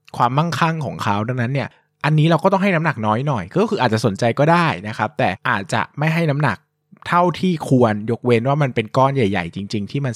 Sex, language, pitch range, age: male, Thai, 115-155 Hz, 20-39